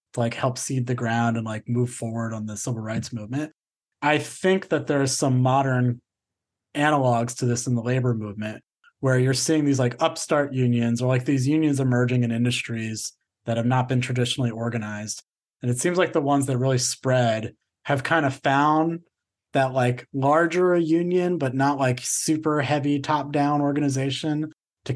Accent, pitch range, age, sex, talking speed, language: American, 125-150 Hz, 30-49, male, 185 wpm, English